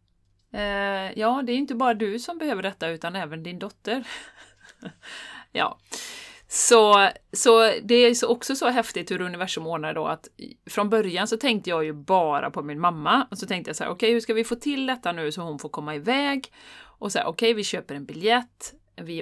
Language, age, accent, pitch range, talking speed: Swedish, 30-49, native, 155-225 Hz, 205 wpm